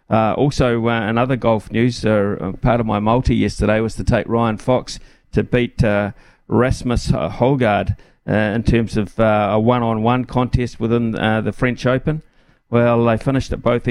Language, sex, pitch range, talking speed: English, male, 110-130 Hz, 175 wpm